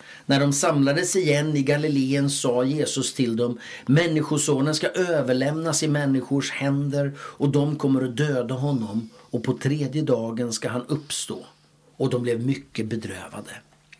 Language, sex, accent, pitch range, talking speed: Swedish, male, native, 125-160 Hz, 145 wpm